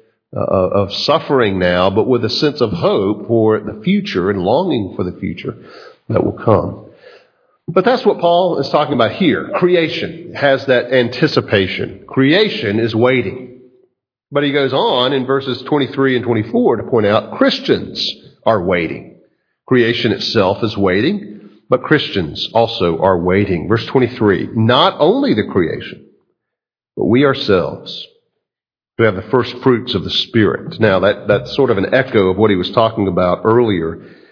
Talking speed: 160 wpm